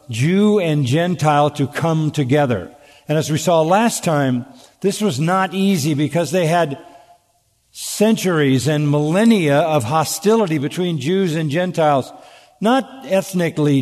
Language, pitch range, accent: English, 140-180 Hz, American